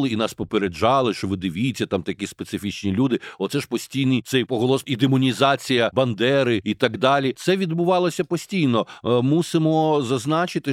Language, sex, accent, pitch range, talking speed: Ukrainian, male, native, 115-140 Hz, 145 wpm